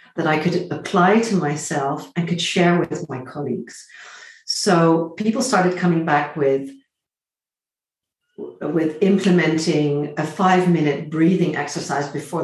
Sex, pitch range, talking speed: female, 150-190 Hz, 125 wpm